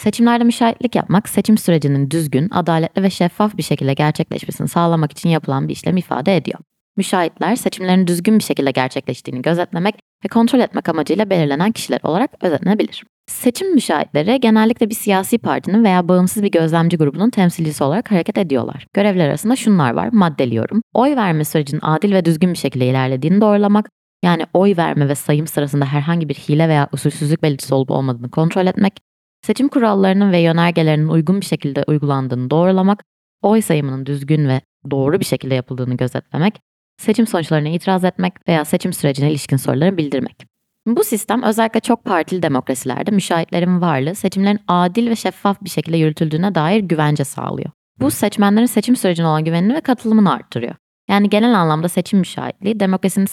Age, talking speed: 20-39, 160 wpm